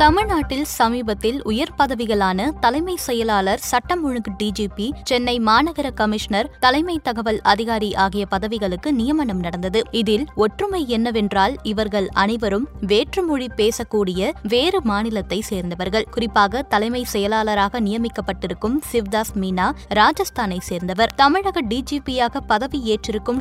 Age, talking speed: 20-39, 100 wpm